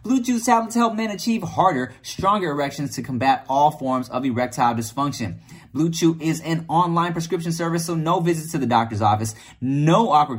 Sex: male